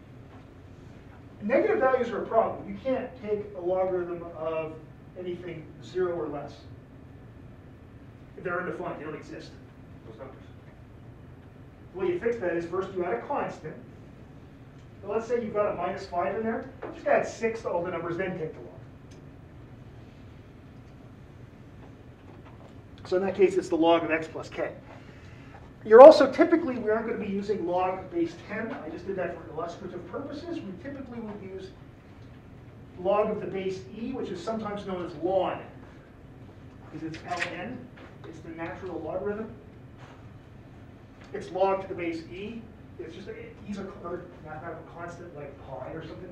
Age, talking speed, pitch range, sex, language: 40-59, 160 wpm, 125-190 Hz, male, English